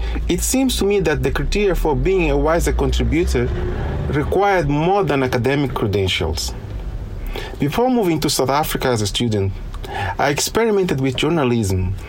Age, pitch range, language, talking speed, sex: 40-59, 115-160 Hz, English, 145 wpm, male